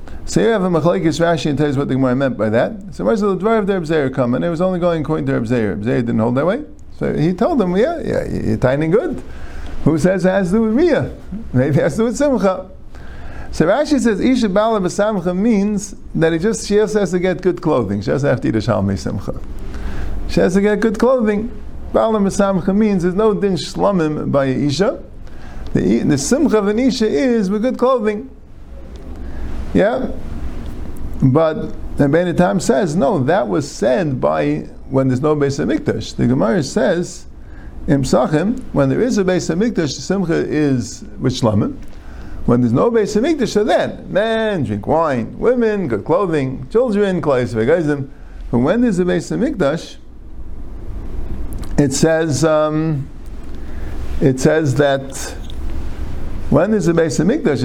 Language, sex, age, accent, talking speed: English, male, 50-69, American, 175 wpm